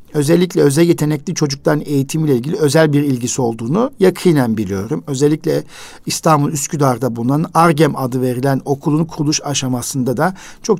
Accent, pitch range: native, 130-165 Hz